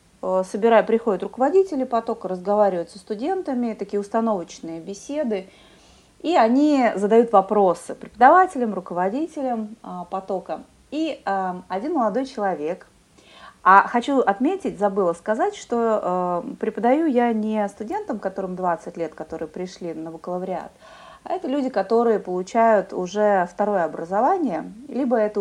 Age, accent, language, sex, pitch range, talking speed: 30-49, native, Russian, female, 185-255 Hz, 115 wpm